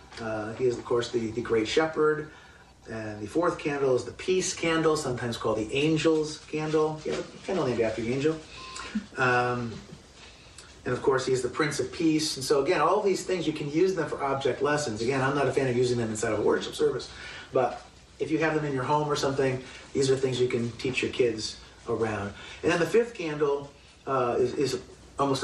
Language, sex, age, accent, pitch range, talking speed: English, male, 30-49, American, 120-155 Hz, 220 wpm